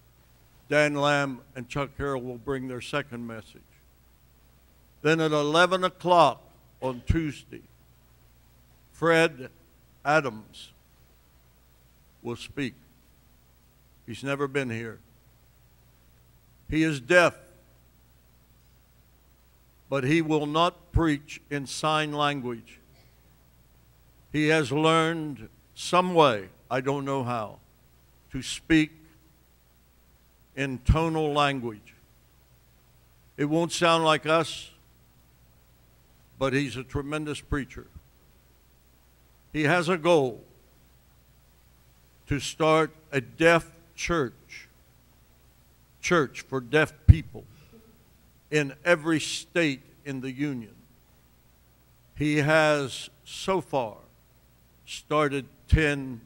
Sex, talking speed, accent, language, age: male, 90 wpm, American, English, 60-79